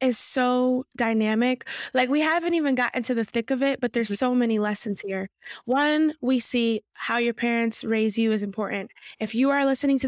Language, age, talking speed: English, 20-39, 200 wpm